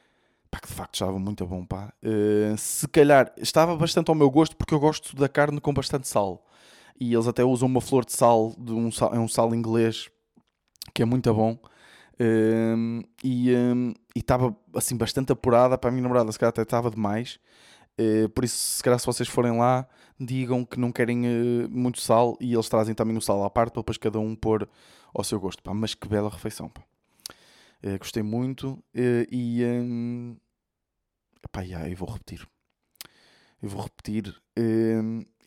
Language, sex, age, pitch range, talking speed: Portuguese, male, 20-39, 110-130 Hz, 190 wpm